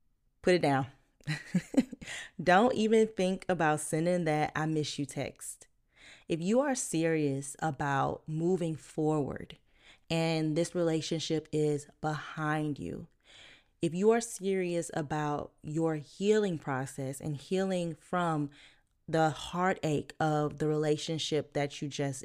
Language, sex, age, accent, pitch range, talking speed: English, female, 20-39, American, 150-175 Hz, 120 wpm